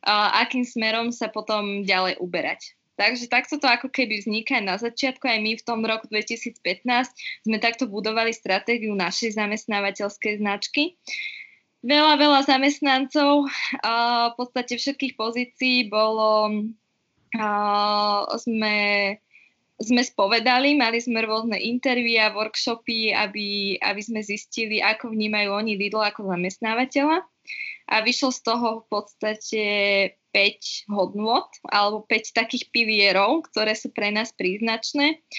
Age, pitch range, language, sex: 20-39, 210-245 Hz, Slovak, female